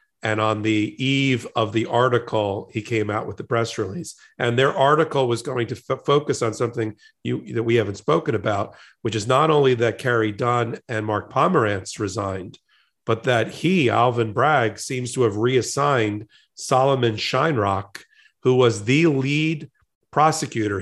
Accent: American